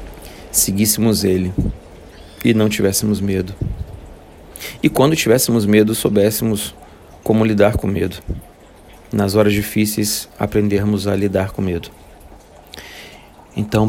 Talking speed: 105 wpm